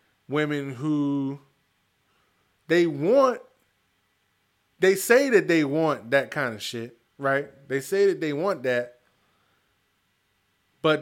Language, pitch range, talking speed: English, 115-155 Hz, 115 wpm